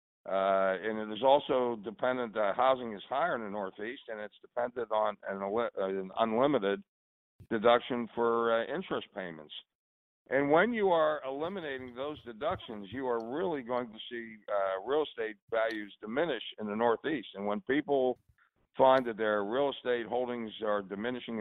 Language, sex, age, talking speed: English, male, 60-79, 165 wpm